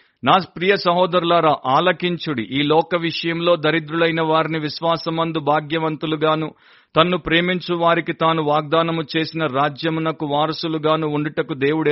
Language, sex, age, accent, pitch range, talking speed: Telugu, male, 50-69, native, 155-185 Hz, 100 wpm